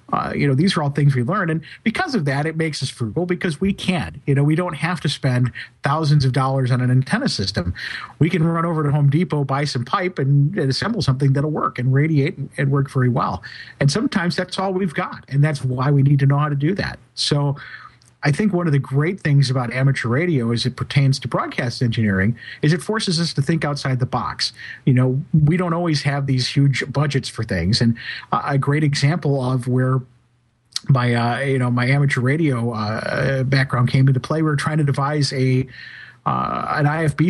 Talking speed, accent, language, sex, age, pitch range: 220 wpm, American, English, male, 50-69, 125-150 Hz